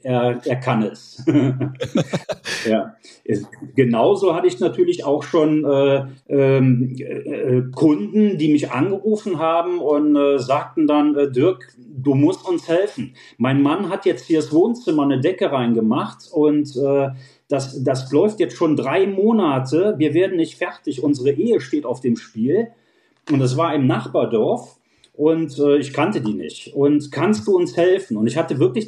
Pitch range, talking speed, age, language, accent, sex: 140-195 Hz, 155 wpm, 40-59, German, German, male